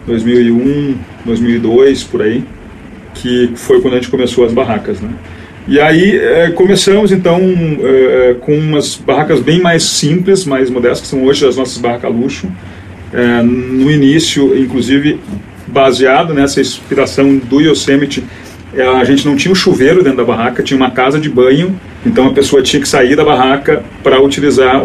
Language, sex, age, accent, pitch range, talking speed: Portuguese, male, 40-59, Brazilian, 125-165 Hz, 160 wpm